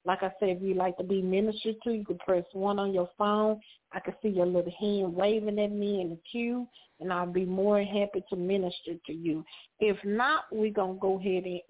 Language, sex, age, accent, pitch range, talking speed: English, female, 40-59, American, 185-215 Hz, 235 wpm